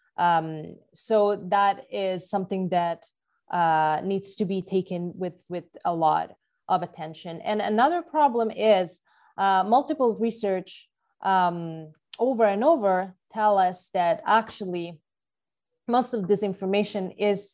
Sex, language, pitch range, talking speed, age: female, English, 180-220 Hz, 125 wpm, 30-49